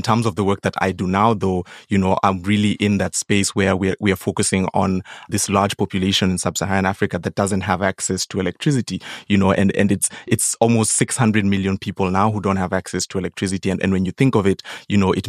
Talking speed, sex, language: 240 wpm, male, English